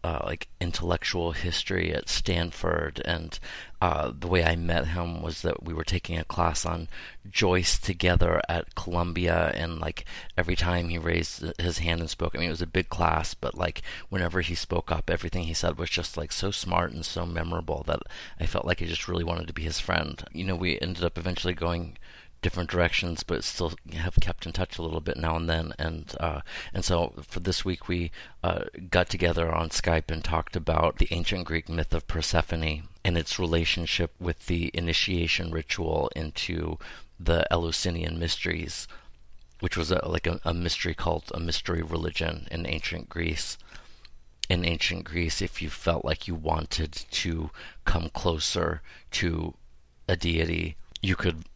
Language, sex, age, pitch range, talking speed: English, male, 30-49, 80-90 Hz, 180 wpm